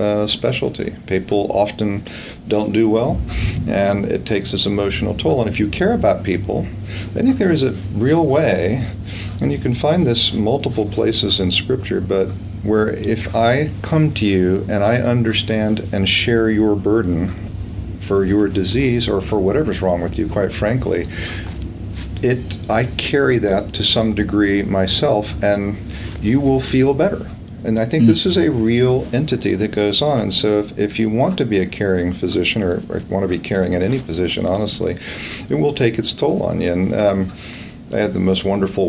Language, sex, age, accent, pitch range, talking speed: English, male, 40-59, American, 95-115 Hz, 185 wpm